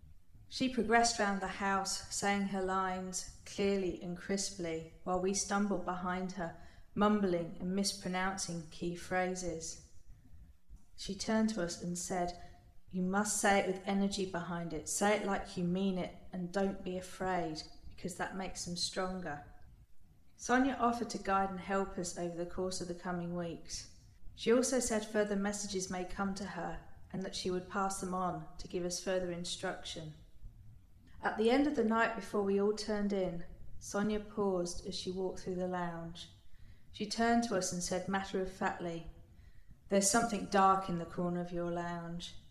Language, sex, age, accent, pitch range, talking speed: English, female, 40-59, British, 175-200 Hz, 170 wpm